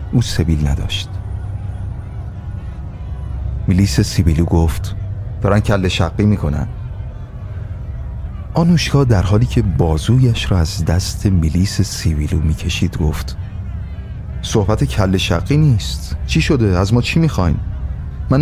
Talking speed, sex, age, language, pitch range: 110 wpm, male, 30-49, Persian, 80-105 Hz